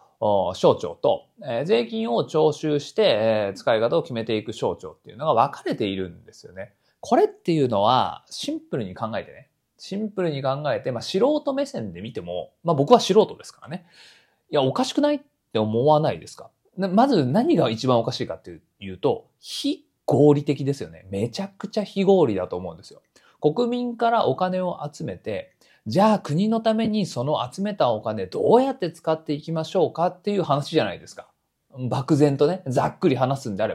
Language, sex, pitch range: Japanese, male, 140-200 Hz